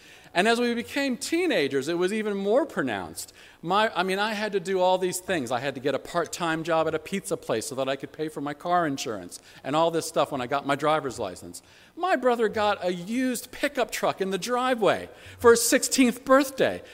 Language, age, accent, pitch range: English, 50-69, American, 145-230 Hz